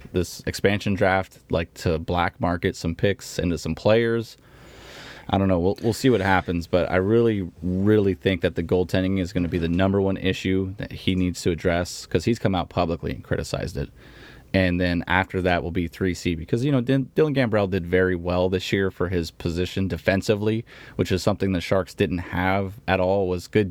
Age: 20-39